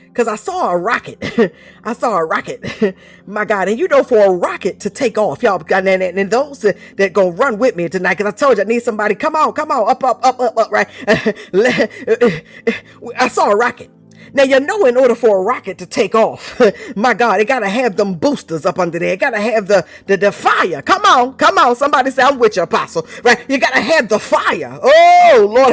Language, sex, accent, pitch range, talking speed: English, female, American, 215-300 Hz, 240 wpm